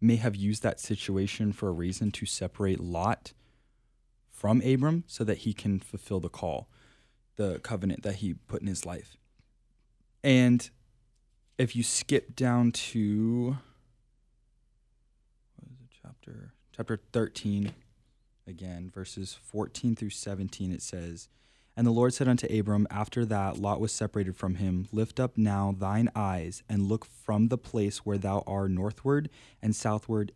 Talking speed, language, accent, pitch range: 145 wpm, English, American, 100-115 Hz